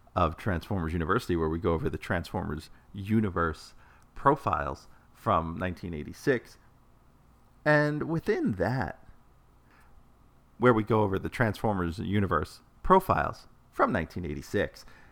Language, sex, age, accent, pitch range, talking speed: English, male, 40-59, American, 85-115 Hz, 105 wpm